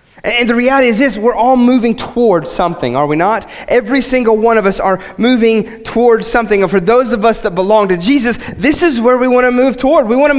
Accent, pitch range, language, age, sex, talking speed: American, 180-245 Hz, English, 30-49, male, 245 wpm